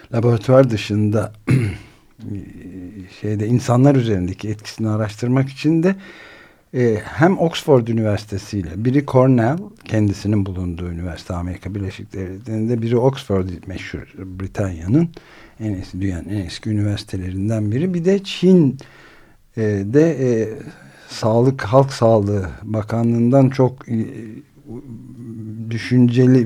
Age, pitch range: 60-79, 105-135 Hz